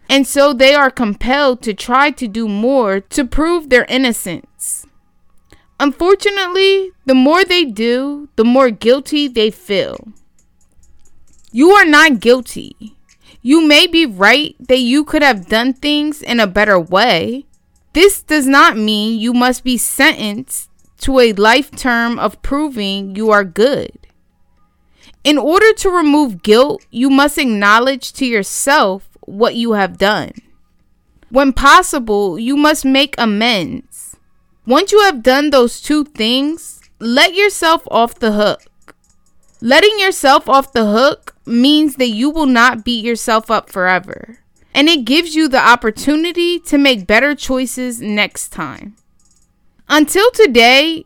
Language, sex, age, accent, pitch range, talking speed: English, female, 20-39, American, 220-295 Hz, 140 wpm